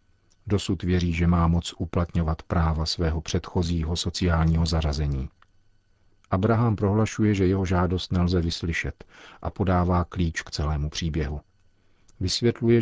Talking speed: 115 wpm